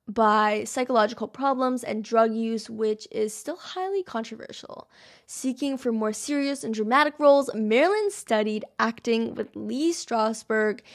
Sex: female